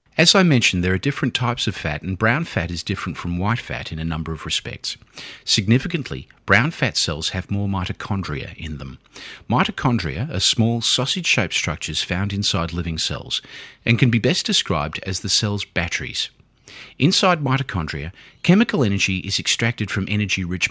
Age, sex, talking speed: 40-59, male, 165 wpm